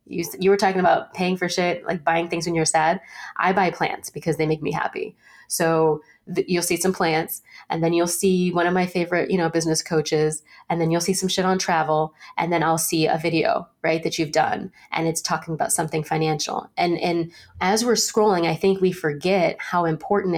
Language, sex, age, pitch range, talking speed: English, female, 20-39, 165-195 Hz, 220 wpm